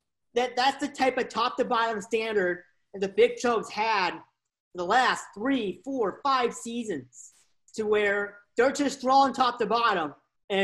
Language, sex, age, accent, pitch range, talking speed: English, male, 40-59, American, 235-315 Hz, 145 wpm